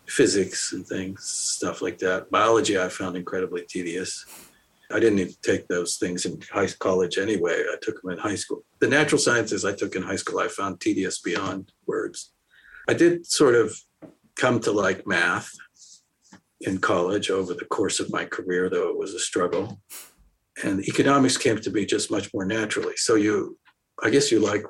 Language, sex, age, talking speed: English, male, 50-69, 185 wpm